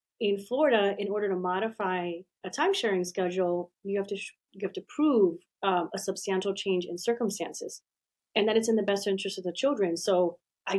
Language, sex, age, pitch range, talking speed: English, female, 30-49, 185-225 Hz, 195 wpm